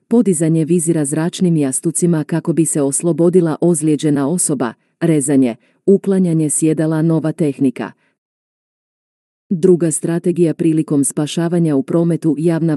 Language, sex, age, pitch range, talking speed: Croatian, female, 40-59, 150-170 Hz, 105 wpm